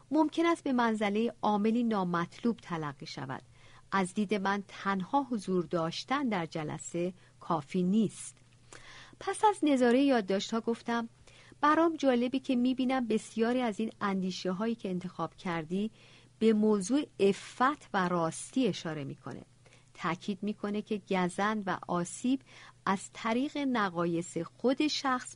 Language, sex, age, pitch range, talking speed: Persian, female, 50-69, 175-245 Hz, 130 wpm